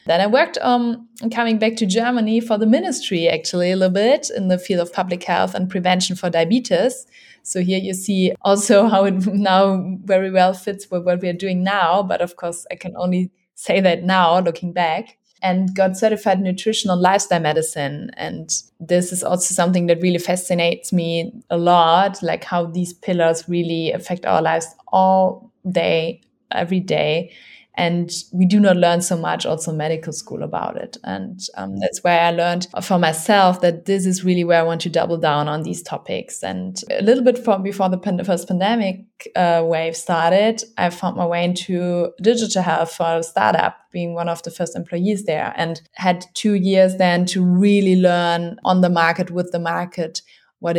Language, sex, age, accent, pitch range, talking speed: English, female, 20-39, German, 170-195 Hz, 190 wpm